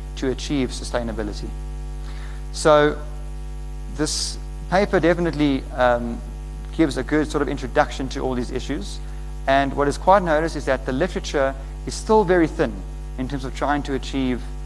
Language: English